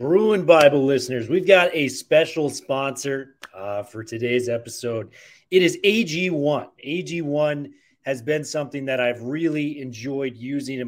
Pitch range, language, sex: 125-160 Hz, English, male